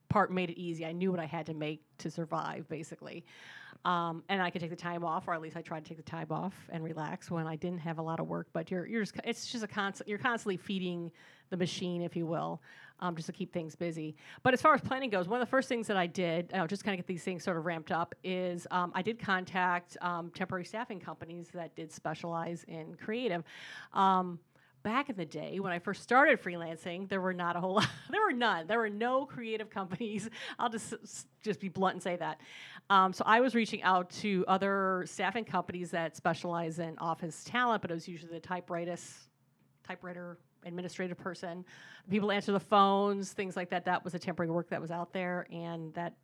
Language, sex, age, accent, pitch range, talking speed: English, female, 40-59, American, 170-200 Hz, 230 wpm